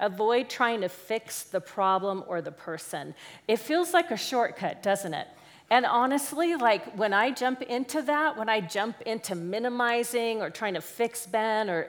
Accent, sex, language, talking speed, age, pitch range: American, female, English, 175 wpm, 40-59, 190-250 Hz